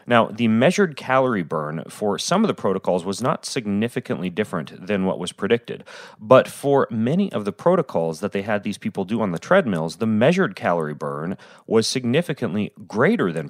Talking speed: 180 wpm